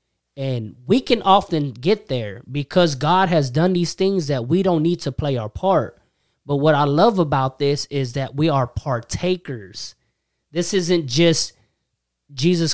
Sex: male